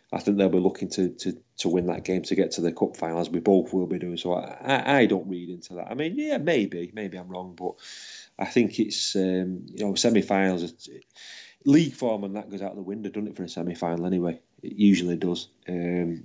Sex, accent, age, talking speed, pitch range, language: male, British, 30-49, 230 wpm, 90-105 Hz, English